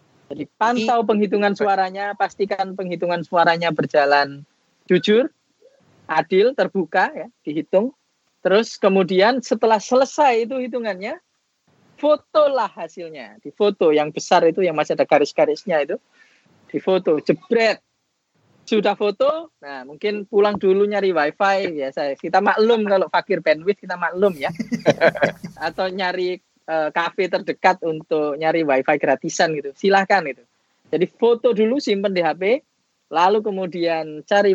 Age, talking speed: 20-39, 120 wpm